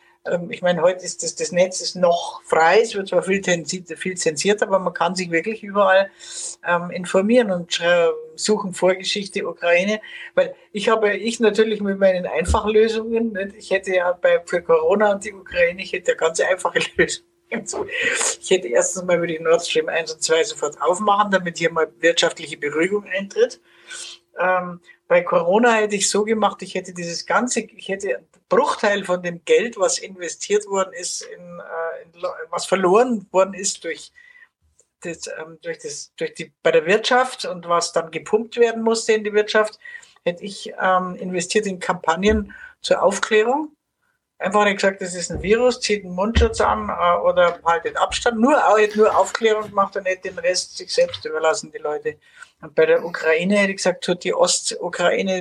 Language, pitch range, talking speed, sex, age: German, 180-250 Hz, 175 wpm, female, 60-79